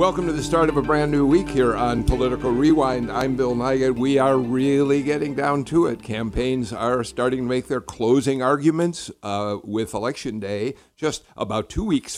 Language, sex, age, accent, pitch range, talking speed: English, male, 60-79, American, 105-135 Hz, 190 wpm